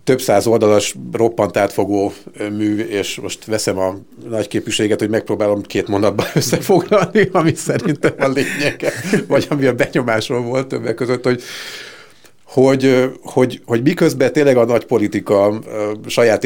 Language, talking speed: Hungarian, 140 wpm